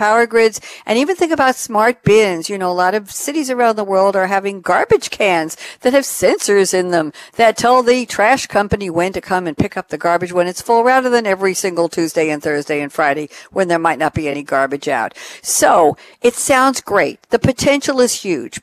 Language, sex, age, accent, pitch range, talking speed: English, female, 60-79, American, 170-230 Hz, 215 wpm